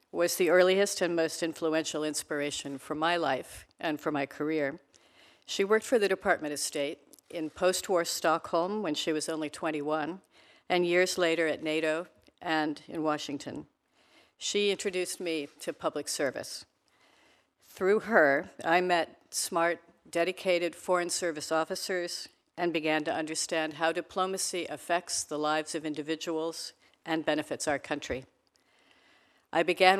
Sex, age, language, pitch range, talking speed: female, 50-69, English, 155-180 Hz, 140 wpm